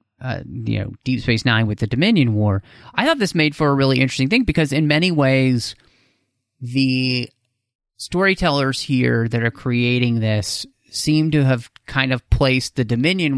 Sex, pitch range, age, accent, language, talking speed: male, 115-140 Hz, 30-49, American, English, 165 wpm